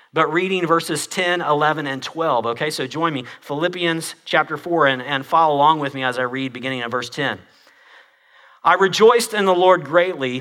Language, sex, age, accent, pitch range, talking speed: English, male, 40-59, American, 135-175 Hz, 190 wpm